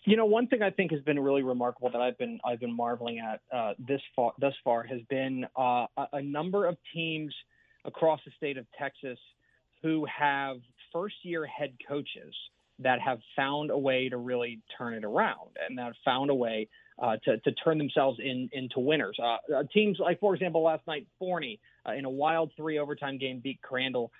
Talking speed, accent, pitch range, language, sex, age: 205 wpm, American, 130-160 Hz, English, male, 30-49